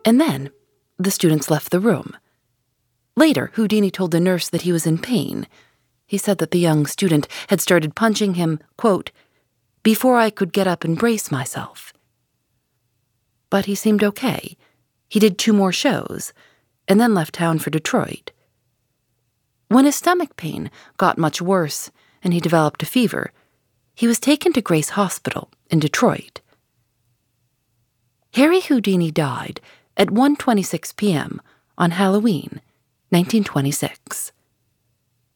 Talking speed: 135 wpm